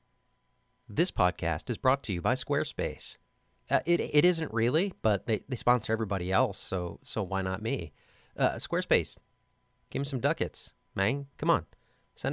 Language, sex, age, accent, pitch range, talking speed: English, male, 40-59, American, 105-140 Hz, 165 wpm